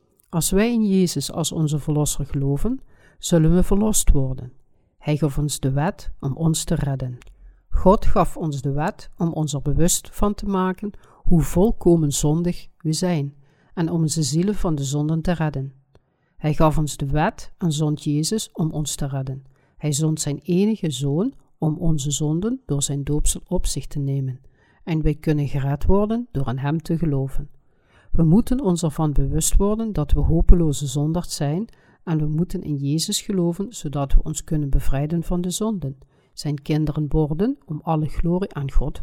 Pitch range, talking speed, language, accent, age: 140-180 Hz, 180 wpm, Dutch, Dutch, 60-79